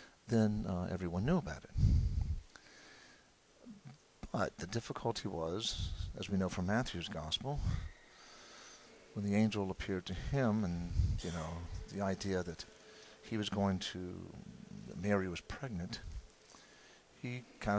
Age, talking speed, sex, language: 50-69, 130 wpm, male, English